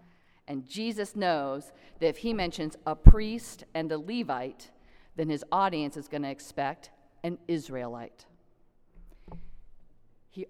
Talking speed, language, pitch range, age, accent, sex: 125 wpm, English, 145-195 Hz, 40-59, American, female